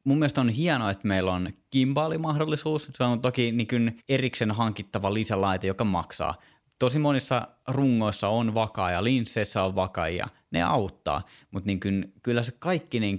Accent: native